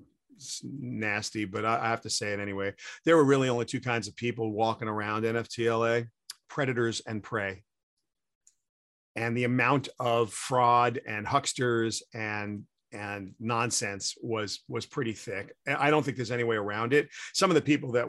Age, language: 40-59, English